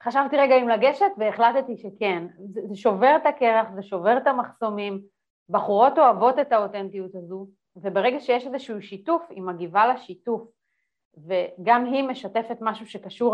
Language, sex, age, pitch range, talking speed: Hebrew, female, 30-49, 195-250 Hz, 140 wpm